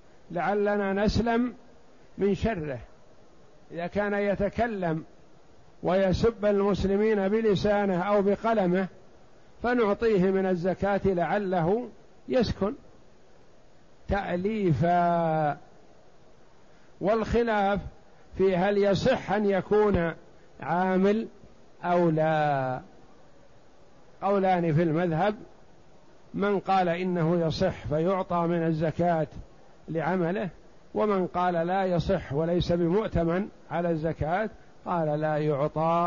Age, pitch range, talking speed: 50-69, 165-200 Hz, 80 wpm